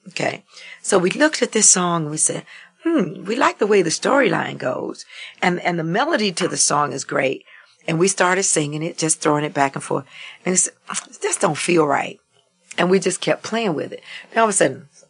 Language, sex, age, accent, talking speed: English, female, 50-69, American, 225 wpm